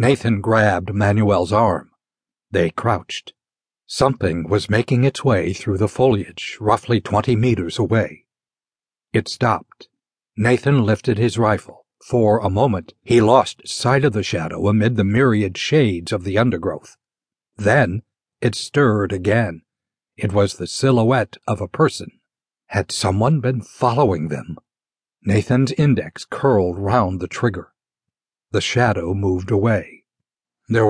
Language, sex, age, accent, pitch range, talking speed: English, male, 60-79, American, 100-125 Hz, 130 wpm